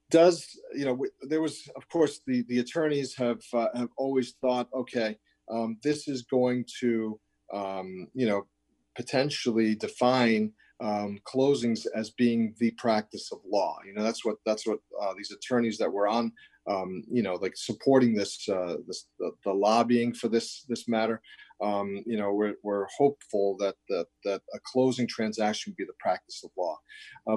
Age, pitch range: 40-59, 110-135 Hz